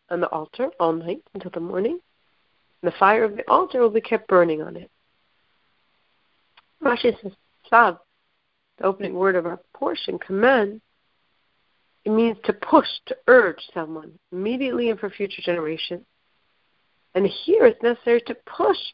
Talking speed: 150 wpm